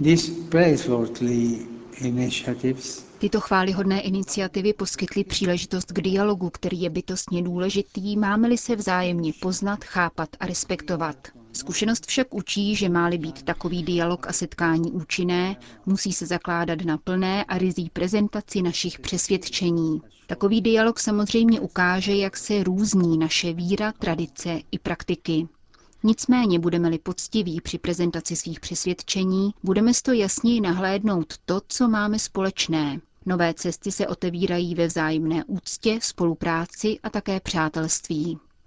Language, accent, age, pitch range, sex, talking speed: Czech, native, 30-49, 170-200 Hz, female, 120 wpm